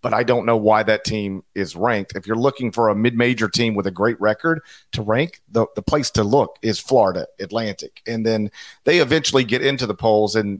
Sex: male